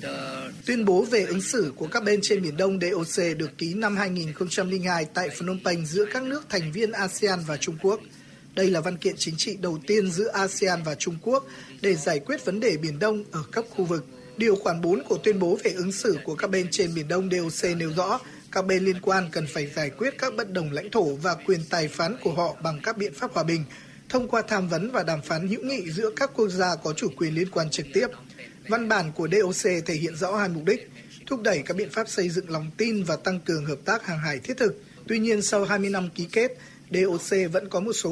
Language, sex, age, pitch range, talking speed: Vietnamese, male, 20-39, 170-215 Hz, 245 wpm